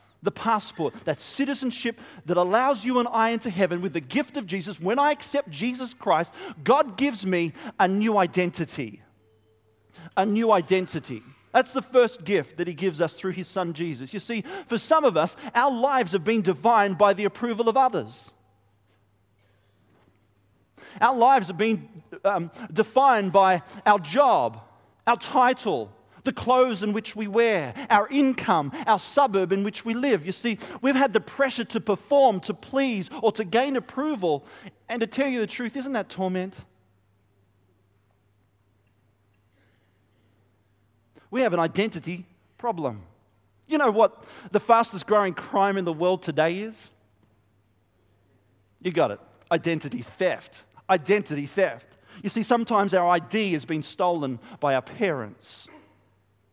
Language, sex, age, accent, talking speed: English, male, 40-59, Australian, 150 wpm